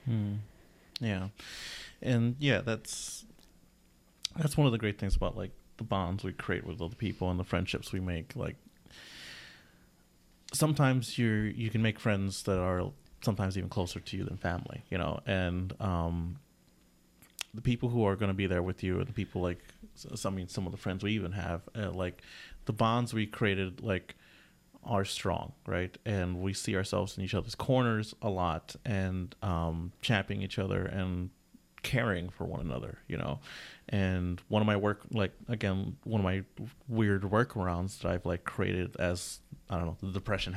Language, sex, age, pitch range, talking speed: English, male, 30-49, 90-110 Hz, 180 wpm